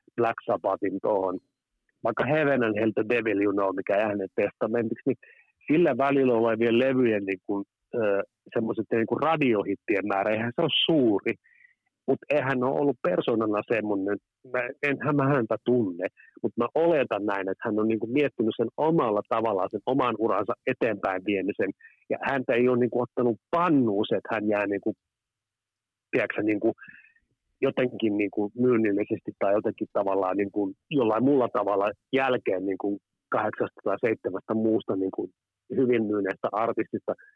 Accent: native